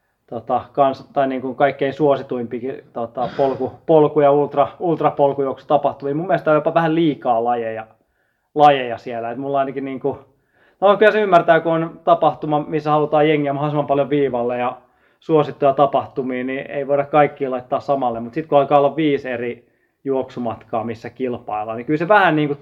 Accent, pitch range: native, 120-145 Hz